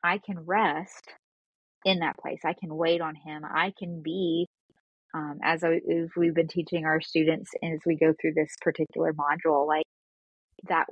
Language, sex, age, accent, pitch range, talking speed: English, female, 20-39, American, 160-185 Hz, 170 wpm